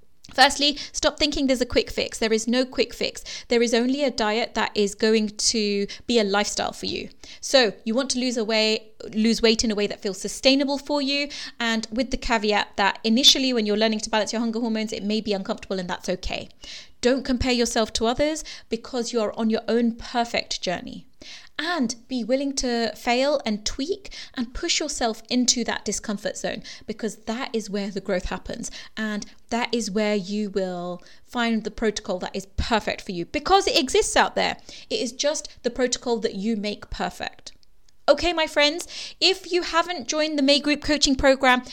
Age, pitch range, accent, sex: 20-39, 220-275 Hz, British, female